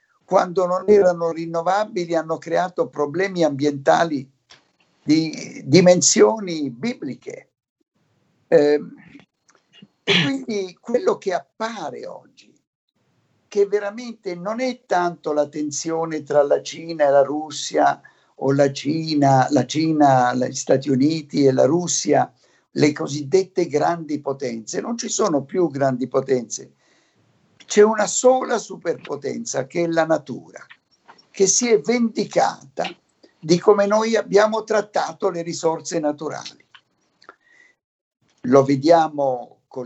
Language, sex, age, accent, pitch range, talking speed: Italian, male, 60-79, native, 140-205 Hz, 110 wpm